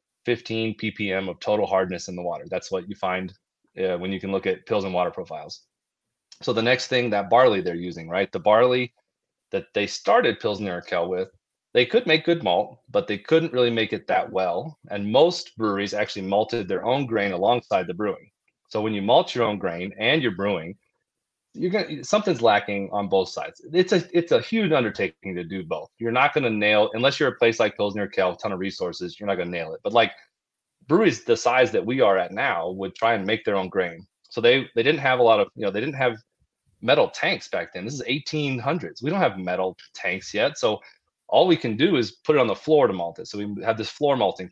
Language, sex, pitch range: English, male, 95-145 Hz